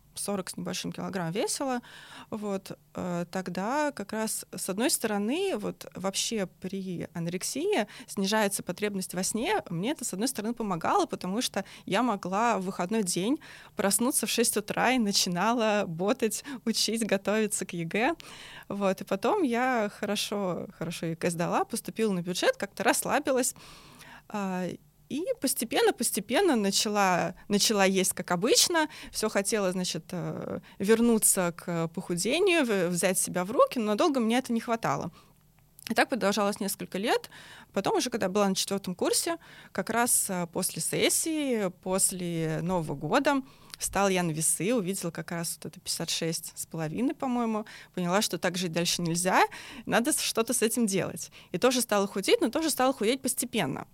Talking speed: 145 wpm